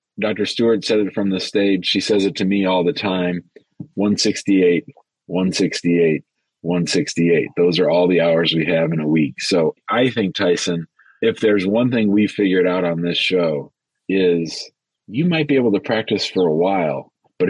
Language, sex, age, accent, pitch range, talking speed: English, male, 40-59, American, 90-110 Hz, 180 wpm